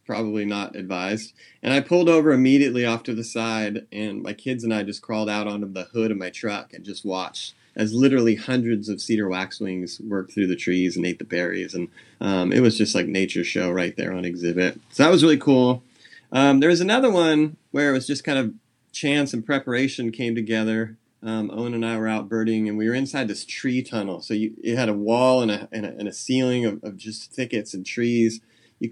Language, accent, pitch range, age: English, American, 105-125 Hz, 30-49